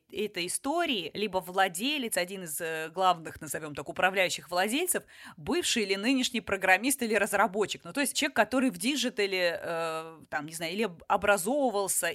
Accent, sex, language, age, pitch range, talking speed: native, female, Russian, 20-39, 185-245 Hz, 150 wpm